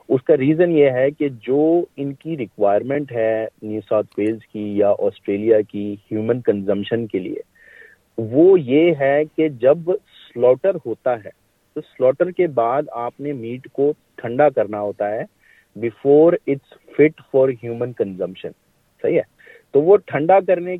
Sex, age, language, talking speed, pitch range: male, 40-59, Urdu, 150 wpm, 110-155 Hz